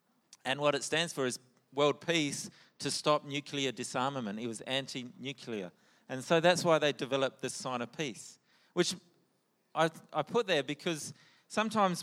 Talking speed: 160 wpm